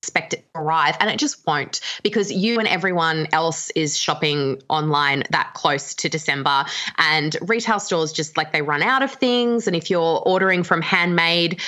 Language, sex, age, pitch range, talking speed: English, female, 20-39, 155-190 Hz, 185 wpm